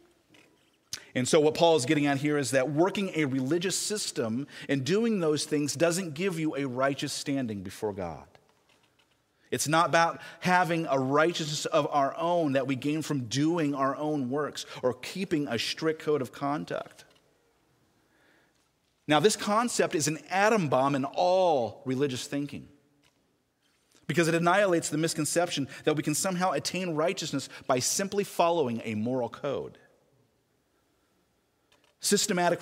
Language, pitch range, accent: English, 130-170 Hz, American